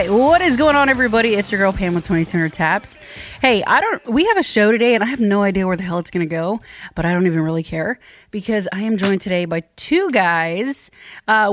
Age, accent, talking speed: 30-49, American, 245 wpm